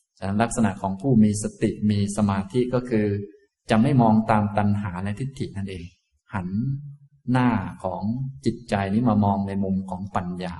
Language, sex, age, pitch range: Thai, male, 20-39, 95-120 Hz